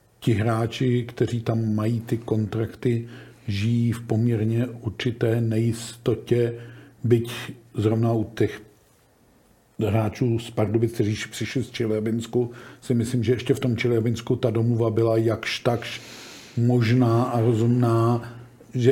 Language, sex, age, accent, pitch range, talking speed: Czech, male, 50-69, native, 115-125 Hz, 125 wpm